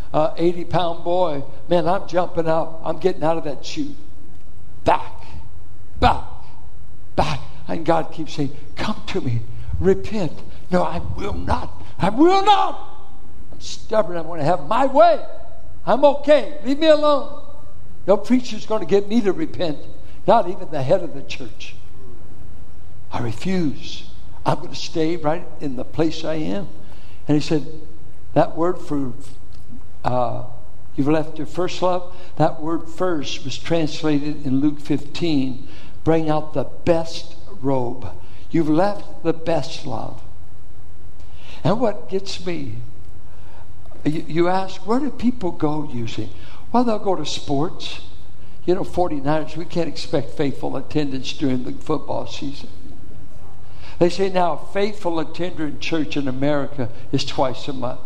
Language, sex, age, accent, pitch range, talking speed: English, male, 60-79, American, 105-175 Hz, 150 wpm